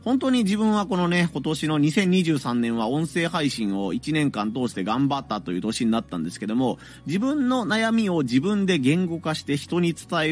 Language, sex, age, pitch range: Japanese, male, 30-49, 110-185 Hz